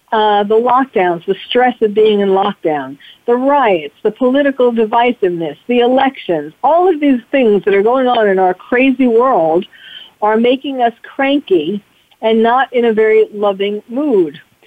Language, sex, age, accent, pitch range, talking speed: English, female, 50-69, American, 210-255 Hz, 160 wpm